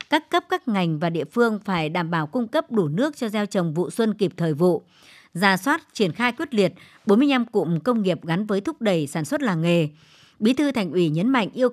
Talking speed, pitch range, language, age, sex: 240 wpm, 180-235 Hz, Vietnamese, 60-79, male